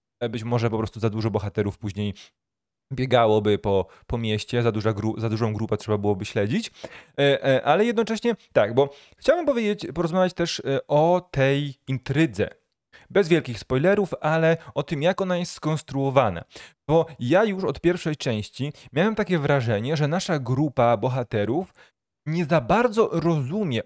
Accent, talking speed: native, 140 wpm